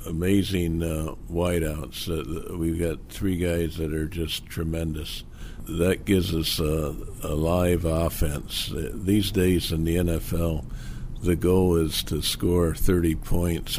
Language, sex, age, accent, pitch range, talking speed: English, male, 60-79, American, 80-90 Hz, 135 wpm